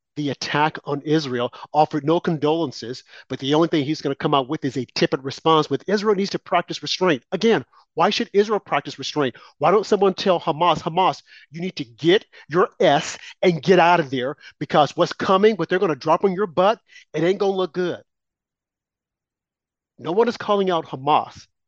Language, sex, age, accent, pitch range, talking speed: English, male, 40-59, American, 150-205 Hz, 200 wpm